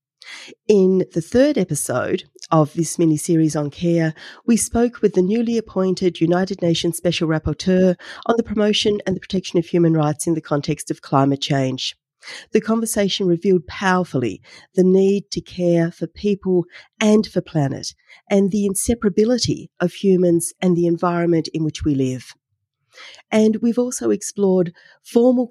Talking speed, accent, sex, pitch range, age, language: 150 wpm, Australian, female, 160-205 Hz, 40-59, English